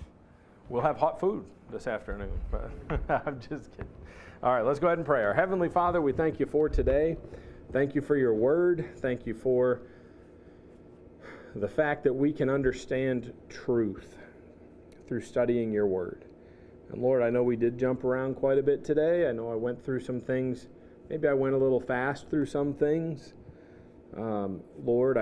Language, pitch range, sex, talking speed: English, 105-130 Hz, male, 175 wpm